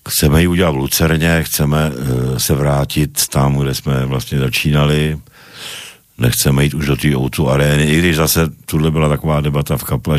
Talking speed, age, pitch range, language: 175 wpm, 50-69, 65-75 Hz, Slovak